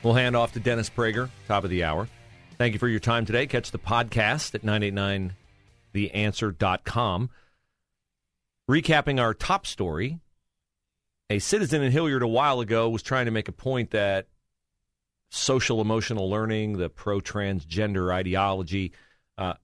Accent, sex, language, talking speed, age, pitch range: American, male, English, 140 wpm, 40-59, 95-125 Hz